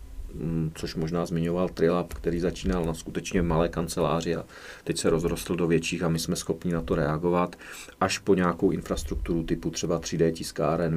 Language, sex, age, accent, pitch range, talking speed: English, male, 40-59, Czech, 80-85 Hz, 170 wpm